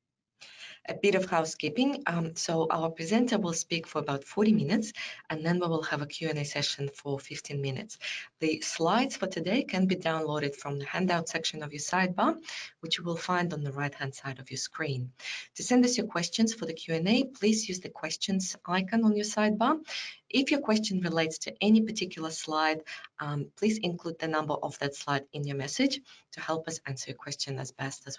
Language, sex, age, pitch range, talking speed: English, female, 20-39, 150-200 Hz, 200 wpm